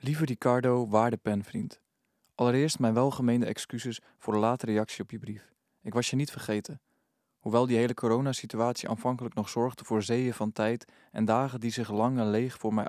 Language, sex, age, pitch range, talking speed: Dutch, male, 20-39, 110-120 Hz, 180 wpm